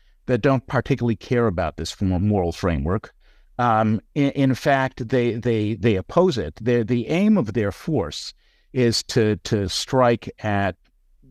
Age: 50-69